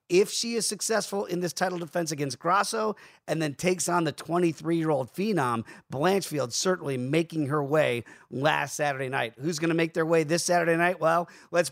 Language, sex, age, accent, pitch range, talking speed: English, male, 40-59, American, 155-190 Hz, 185 wpm